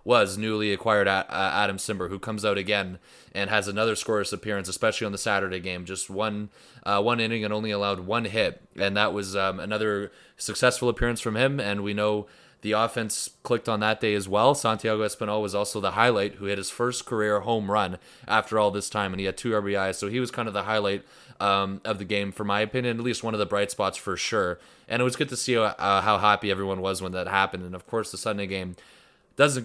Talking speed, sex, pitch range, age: 235 wpm, male, 100-115 Hz, 20-39